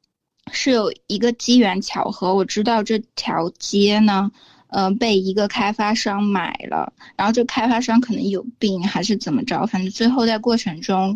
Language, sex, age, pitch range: Chinese, female, 20-39, 195-235 Hz